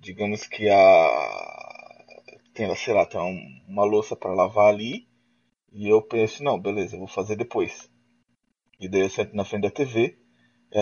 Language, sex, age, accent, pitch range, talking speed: Portuguese, male, 20-39, Brazilian, 105-165 Hz, 165 wpm